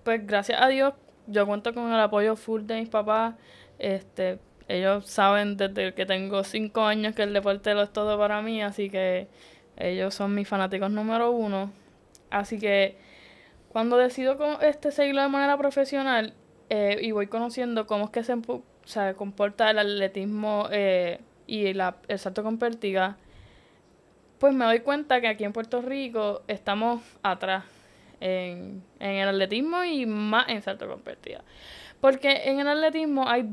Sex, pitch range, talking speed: female, 200-245 Hz, 165 wpm